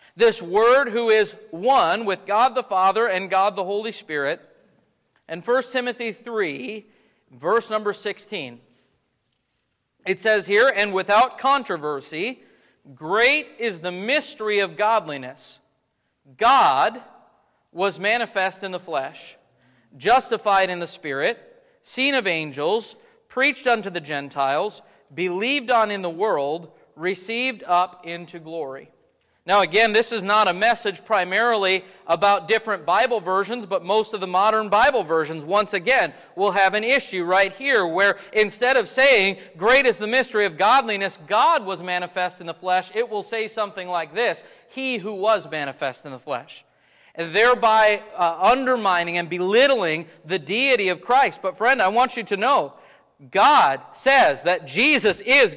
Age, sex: 40-59, male